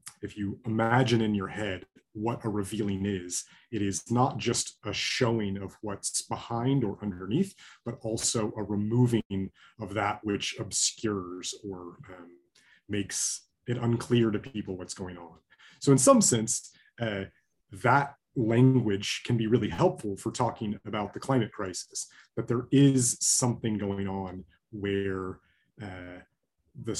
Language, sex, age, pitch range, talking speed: English, male, 30-49, 100-125 Hz, 140 wpm